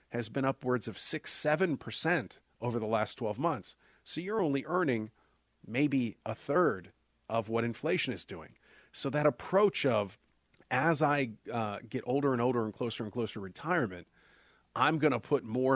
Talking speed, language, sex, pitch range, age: 170 wpm, English, male, 105-130 Hz, 40-59